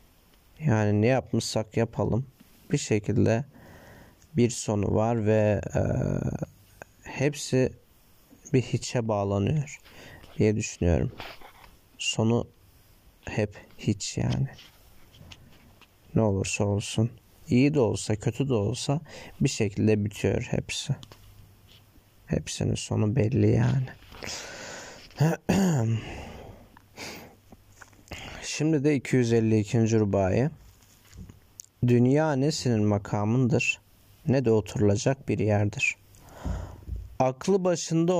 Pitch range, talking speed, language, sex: 100-125 Hz, 80 wpm, Turkish, male